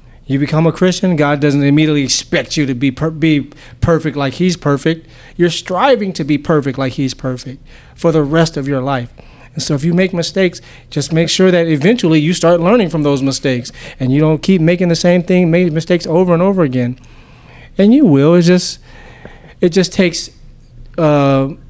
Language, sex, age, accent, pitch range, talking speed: English, male, 30-49, American, 135-170 Hz, 195 wpm